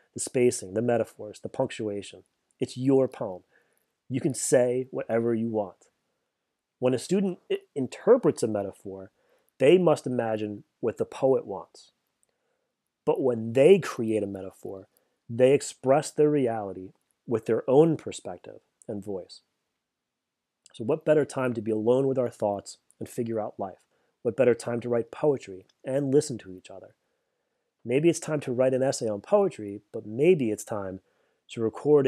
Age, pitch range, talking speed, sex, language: 30-49, 110-130 Hz, 155 wpm, male, English